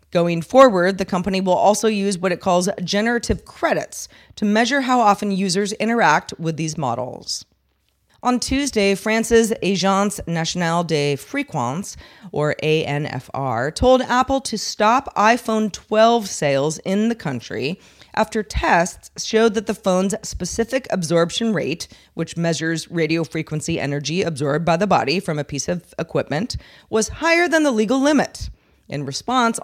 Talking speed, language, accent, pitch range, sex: 145 wpm, English, American, 160-220 Hz, female